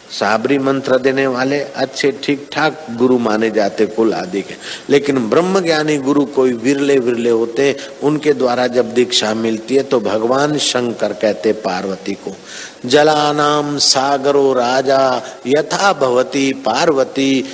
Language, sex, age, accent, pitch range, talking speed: Hindi, male, 50-69, native, 115-135 Hz, 135 wpm